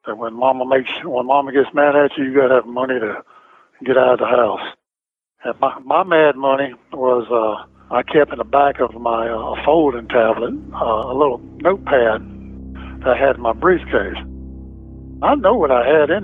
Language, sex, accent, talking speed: English, male, American, 195 wpm